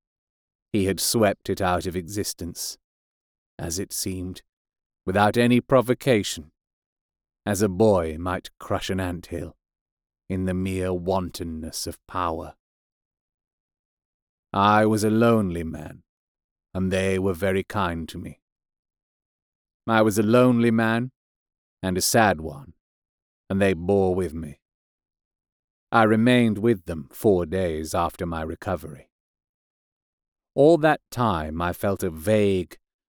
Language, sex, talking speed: English, male, 125 wpm